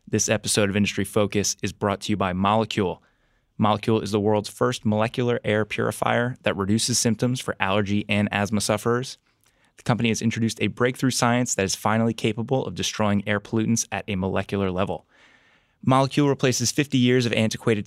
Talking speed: 175 wpm